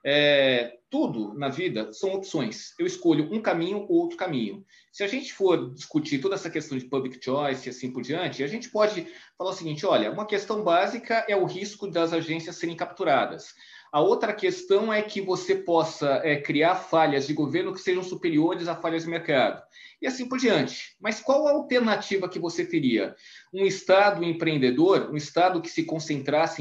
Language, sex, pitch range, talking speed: Portuguese, male, 145-210 Hz, 185 wpm